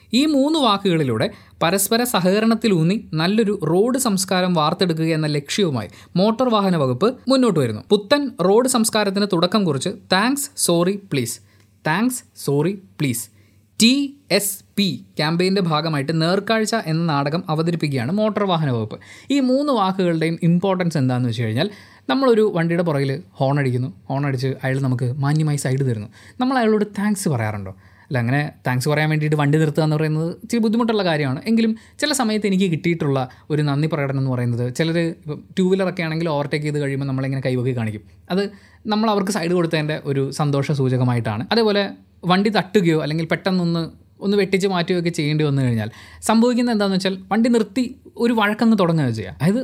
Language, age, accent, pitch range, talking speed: Malayalam, 20-39, native, 135-205 Hz, 145 wpm